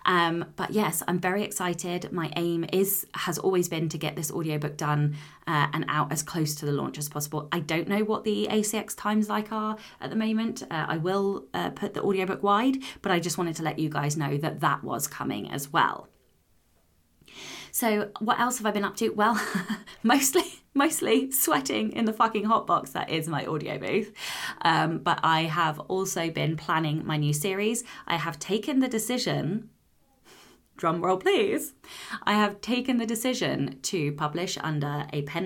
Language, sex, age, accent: English, female, 20-39, British